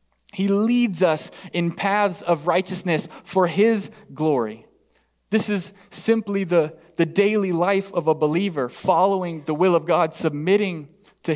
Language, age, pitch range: English, 20-39, 150-190 Hz